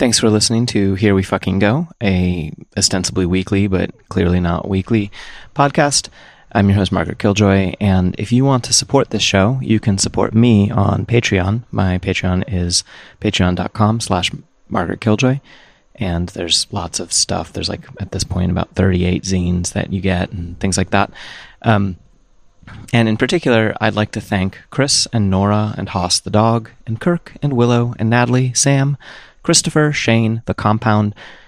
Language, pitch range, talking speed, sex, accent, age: English, 90-110 Hz, 170 wpm, male, American, 30-49